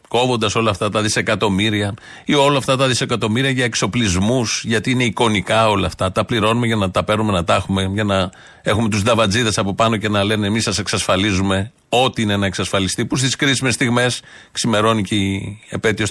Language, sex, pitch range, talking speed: Greek, male, 105-130 Hz, 190 wpm